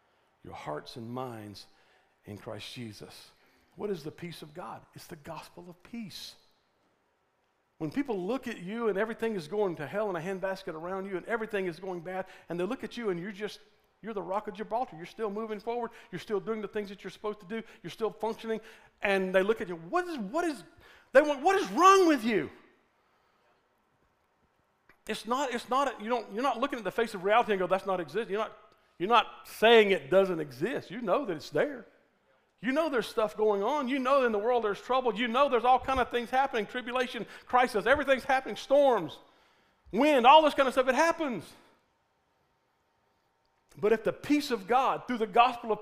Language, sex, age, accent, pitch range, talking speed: English, male, 50-69, American, 180-250 Hz, 210 wpm